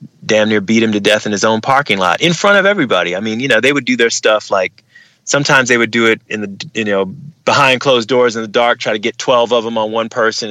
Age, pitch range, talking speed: 30-49, 105-140 Hz, 280 wpm